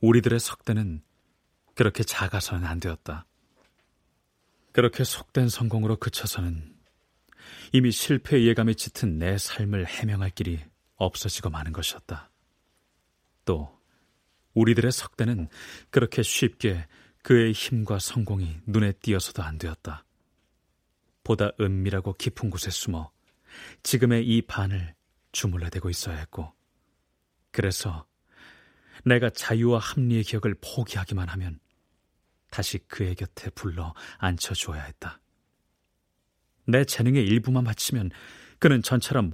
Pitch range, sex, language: 85-115 Hz, male, Korean